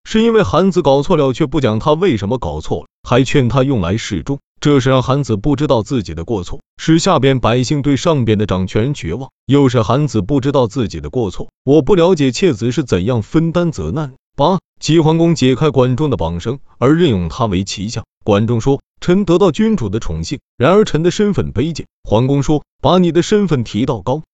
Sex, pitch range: male, 115-160 Hz